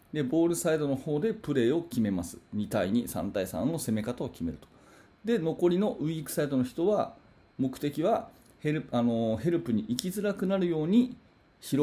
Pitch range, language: 115-175 Hz, Japanese